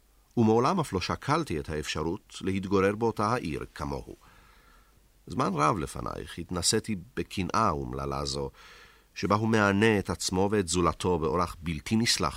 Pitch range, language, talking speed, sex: 80-115 Hz, Hebrew, 130 wpm, male